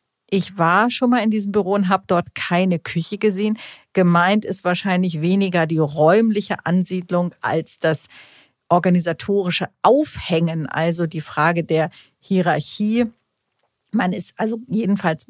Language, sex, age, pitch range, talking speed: German, female, 50-69, 165-200 Hz, 130 wpm